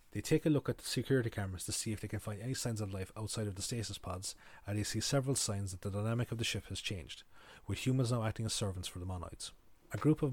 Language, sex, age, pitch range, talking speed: English, male, 30-49, 100-115 Hz, 280 wpm